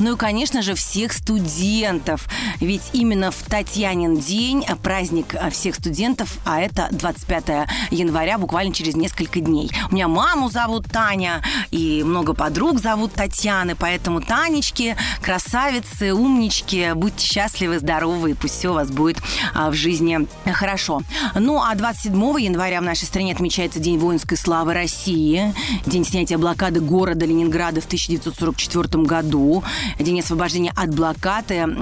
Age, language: 30-49, Russian